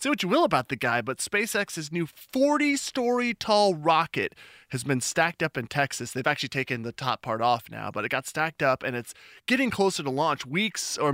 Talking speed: 210 wpm